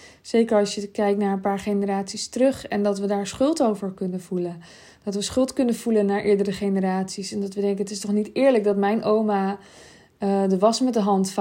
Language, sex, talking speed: Dutch, female, 225 wpm